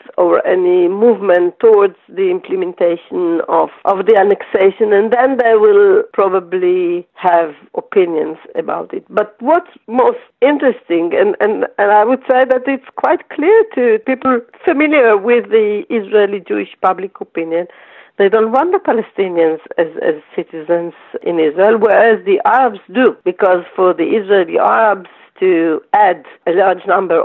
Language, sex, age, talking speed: English, female, 50-69, 145 wpm